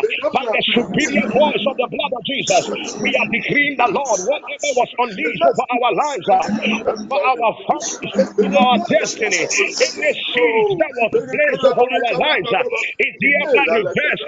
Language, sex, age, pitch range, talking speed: English, male, 50-69, 240-310 Hz, 160 wpm